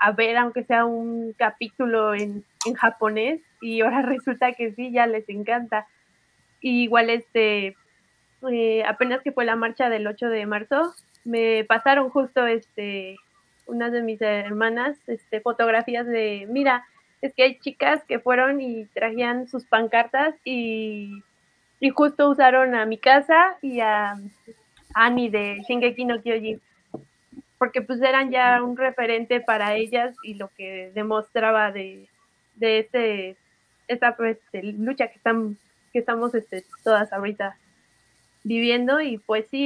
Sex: female